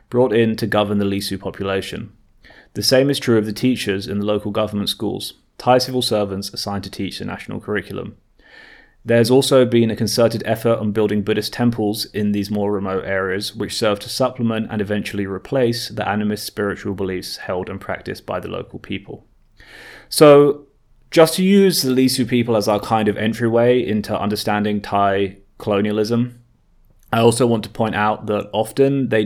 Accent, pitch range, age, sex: British, 100-115 Hz, 20-39, male